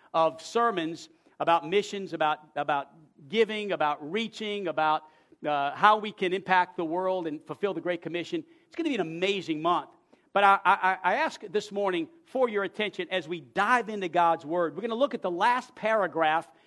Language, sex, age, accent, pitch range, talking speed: English, male, 50-69, American, 175-230 Hz, 190 wpm